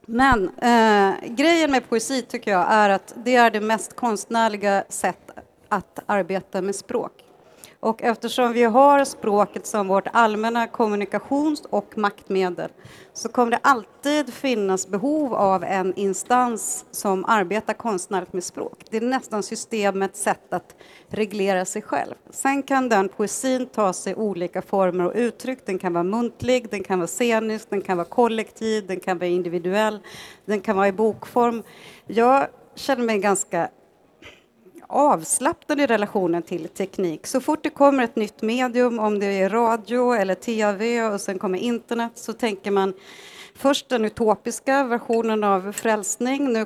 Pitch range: 195-245 Hz